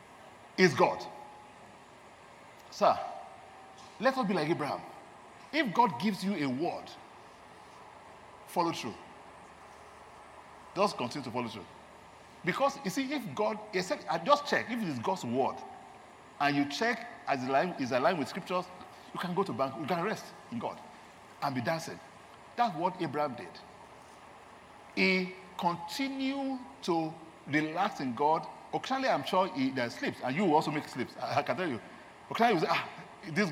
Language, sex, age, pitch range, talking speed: English, male, 50-69, 140-210 Hz, 150 wpm